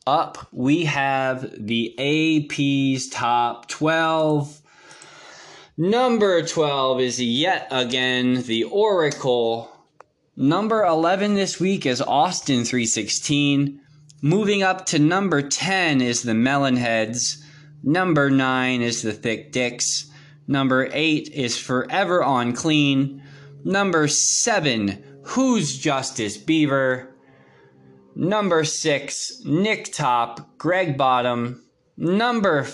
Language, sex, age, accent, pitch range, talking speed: English, male, 20-39, American, 125-165 Hz, 95 wpm